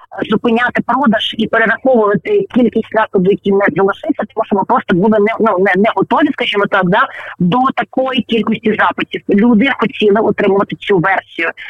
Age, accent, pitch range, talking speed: 30-49, native, 190-225 Hz, 160 wpm